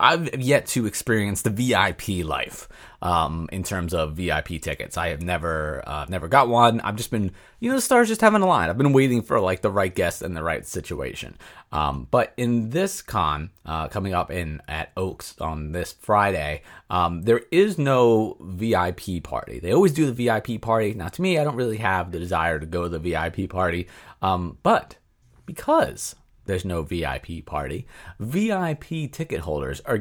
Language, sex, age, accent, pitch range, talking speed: English, male, 30-49, American, 80-110 Hz, 190 wpm